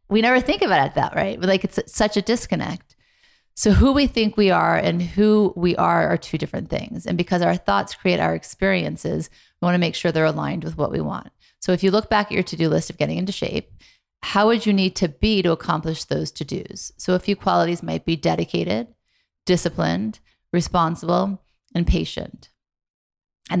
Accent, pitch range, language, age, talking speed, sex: American, 170-200 Hz, English, 30-49, 205 wpm, female